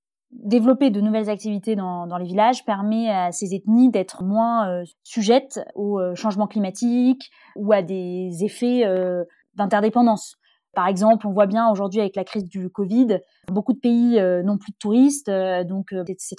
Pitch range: 195-235 Hz